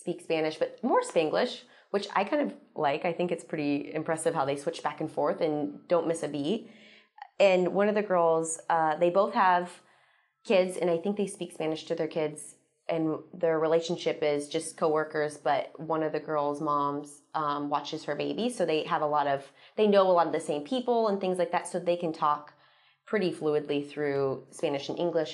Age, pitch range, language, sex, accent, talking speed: 20-39, 155-200 Hz, English, female, American, 210 wpm